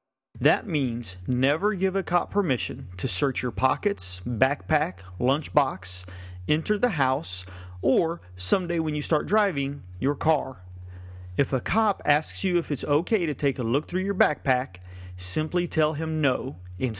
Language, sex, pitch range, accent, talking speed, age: English, male, 125-155 Hz, American, 155 wpm, 40-59